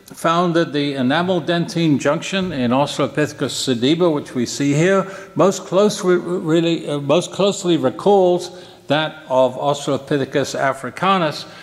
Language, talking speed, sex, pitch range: French, 125 wpm, male, 140-180 Hz